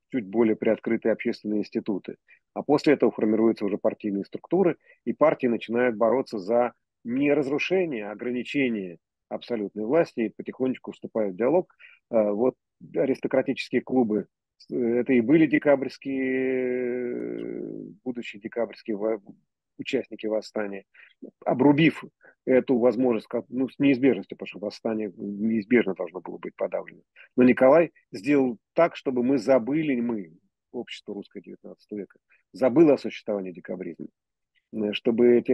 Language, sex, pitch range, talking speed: Russian, male, 110-130 Hz, 120 wpm